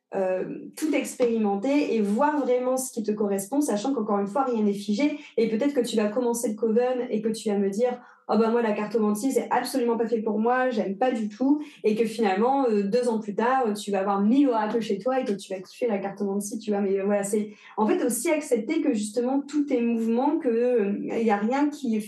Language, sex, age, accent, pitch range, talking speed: French, female, 20-39, French, 210-255 Hz, 260 wpm